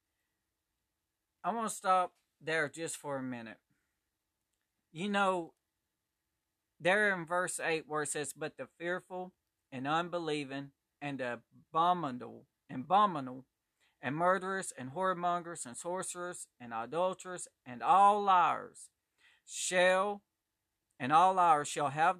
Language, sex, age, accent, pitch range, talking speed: English, male, 40-59, American, 125-180 Hz, 115 wpm